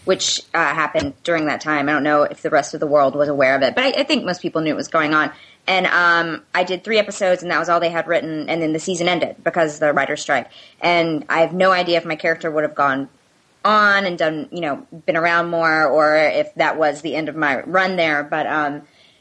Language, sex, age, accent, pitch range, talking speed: English, female, 20-39, American, 155-185 Hz, 260 wpm